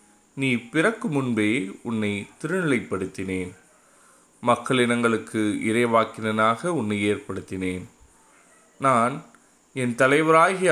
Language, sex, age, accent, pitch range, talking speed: Tamil, male, 20-39, native, 110-150 Hz, 65 wpm